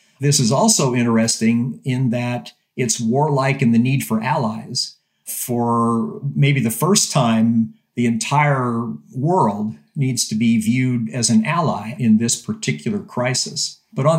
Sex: male